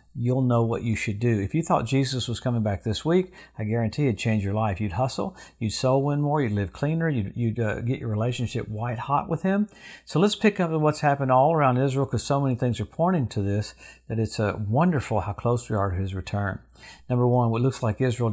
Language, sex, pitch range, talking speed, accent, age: English, male, 110-140 Hz, 245 wpm, American, 50-69